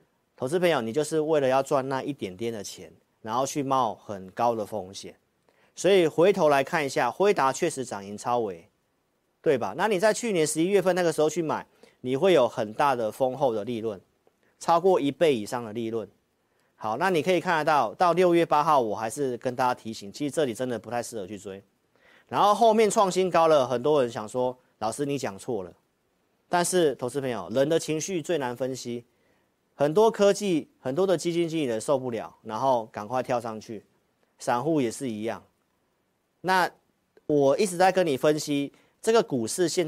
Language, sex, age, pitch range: Chinese, male, 40-59, 115-165 Hz